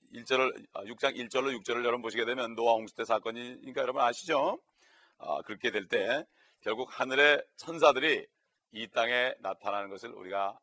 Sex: male